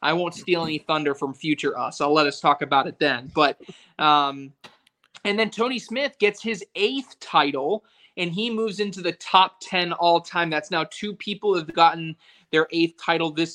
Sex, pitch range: male, 155-205 Hz